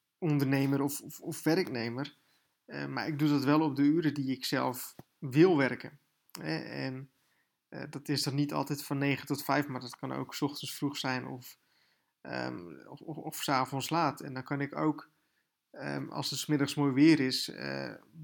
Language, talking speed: Dutch, 195 wpm